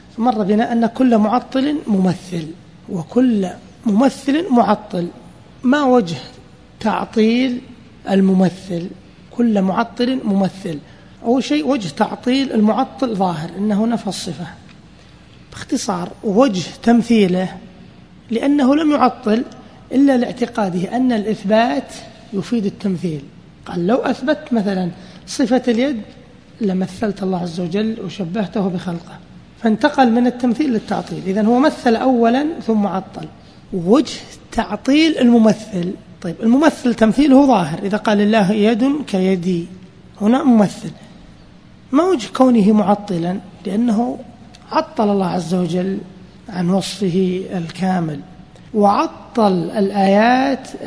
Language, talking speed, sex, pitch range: Arabic, 105 wpm, male, 190-245 Hz